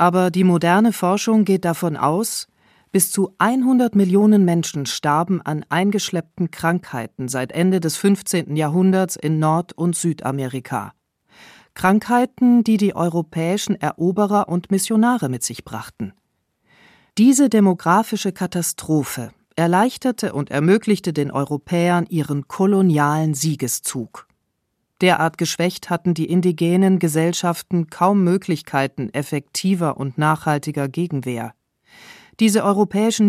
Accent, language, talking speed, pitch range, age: German, German, 110 wpm, 155-210 Hz, 40-59